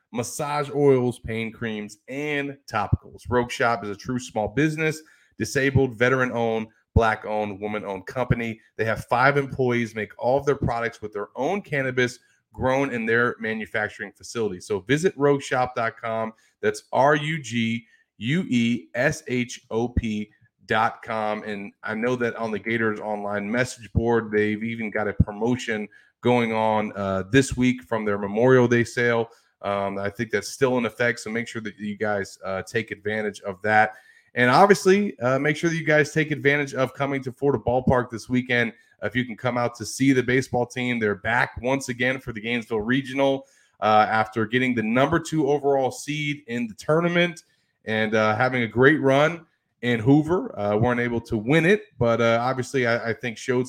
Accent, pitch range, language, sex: American, 110-135 Hz, English, male